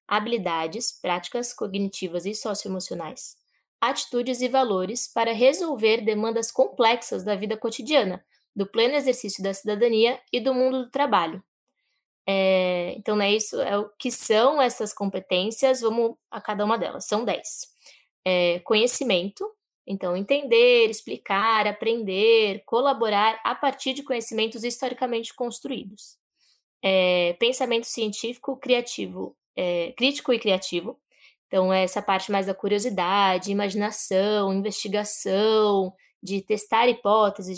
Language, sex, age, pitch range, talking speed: Portuguese, female, 10-29, 195-245 Hz, 120 wpm